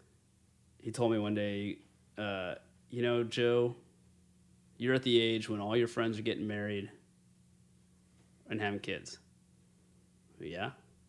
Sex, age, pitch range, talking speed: male, 30-49, 90-120 Hz, 130 wpm